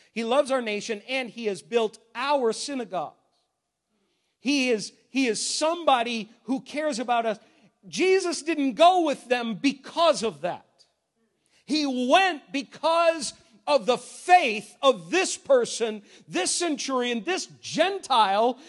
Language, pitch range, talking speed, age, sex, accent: English, 170-285 Hz, 130 wpm, 50-69, male, American